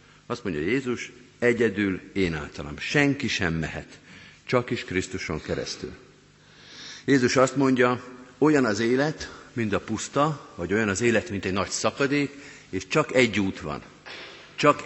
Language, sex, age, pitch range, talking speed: Hungarian, male, 50-69, 95-140 Hz, 140 wpm